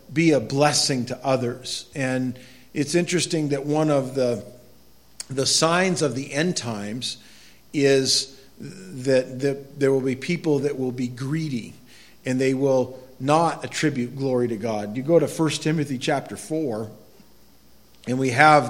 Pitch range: 125-150 Hz